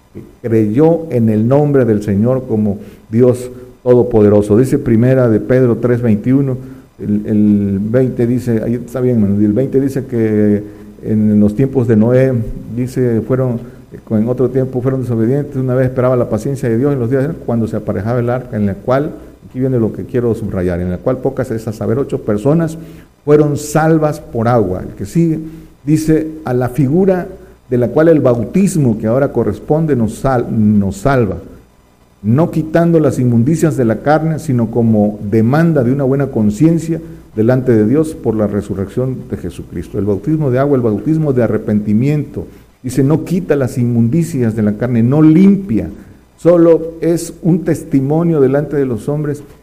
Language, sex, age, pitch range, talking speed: Spanish, male, 50-69, 110-150 Hz, 170 wpm